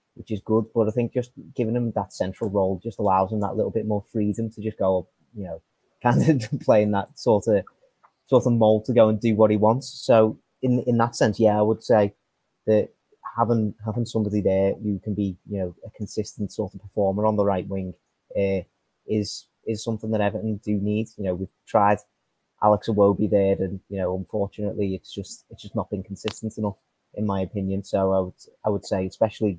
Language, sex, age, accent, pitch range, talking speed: English, male, 30-49, British, 100-110 Hz, 215 wpm